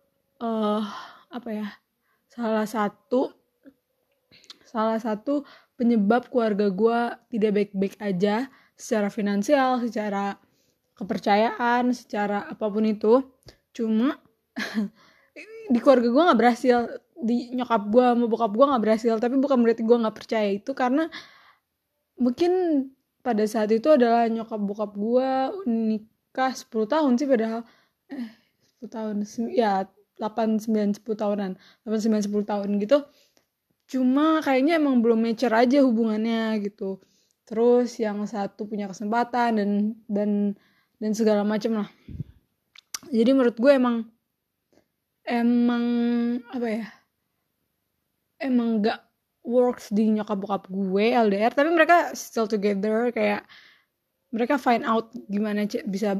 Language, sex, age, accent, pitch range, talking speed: Indonesian, female, 20-39, native, 215-250 Hz, 120 wpm